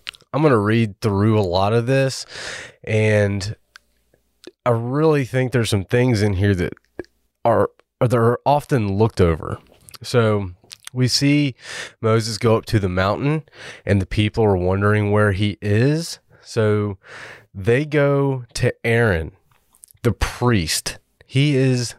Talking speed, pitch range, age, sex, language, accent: 140 wpm, 95-125 Hz, 30-49, male, English, American